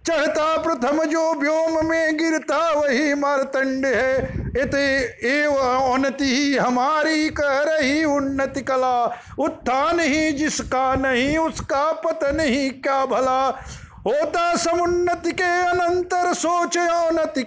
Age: 50-69